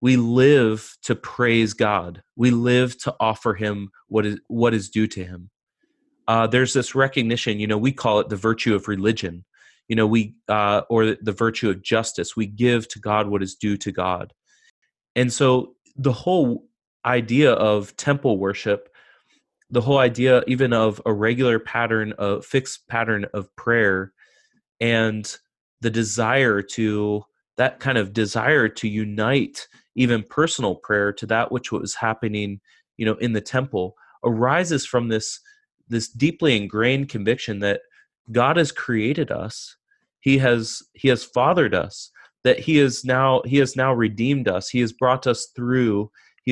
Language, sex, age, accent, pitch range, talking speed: English, male, 30-49, American, 105-125 Hz, 160 wpm